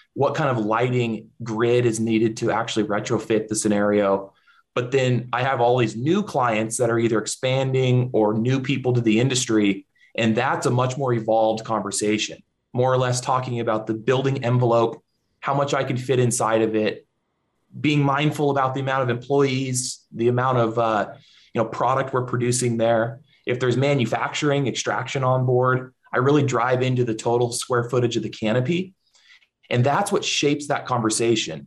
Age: 20-39